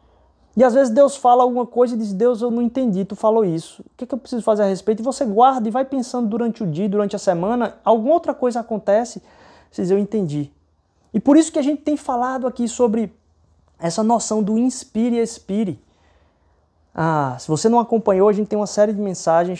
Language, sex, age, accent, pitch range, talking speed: Portuguese, male, 20-39, Brazilian, 155-245 Hz, 215 wpm